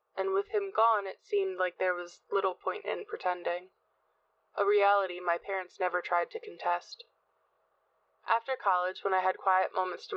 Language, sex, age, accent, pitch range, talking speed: English, female, 20-39, American, 180-215 Hz, 170 wpm